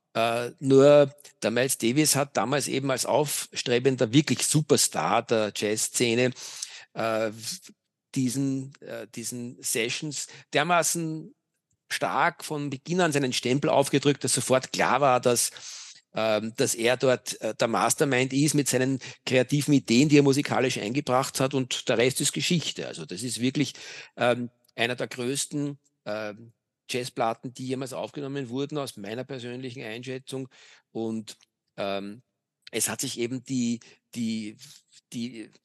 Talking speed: 135 wpm